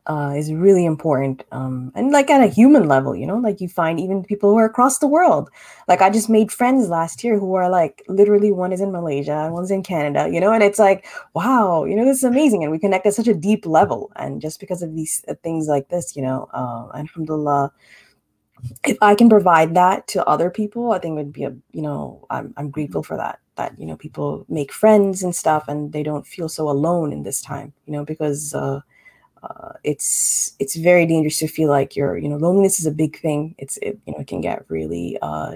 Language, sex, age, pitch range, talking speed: English, female, 20-39, 140-190 Hz, 240 wpm